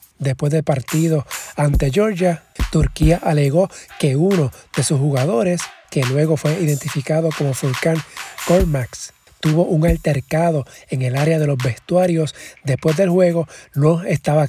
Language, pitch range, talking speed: Spanish, 145-170 Hz, 135 wpm